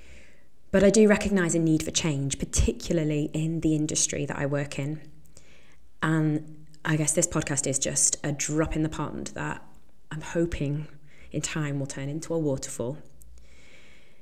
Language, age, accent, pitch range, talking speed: English, 20-39, British, 145-175 Hz, 160 wpm